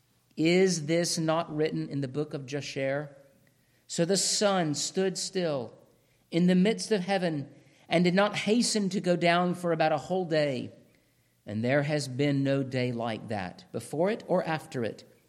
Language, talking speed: English, 175 wpm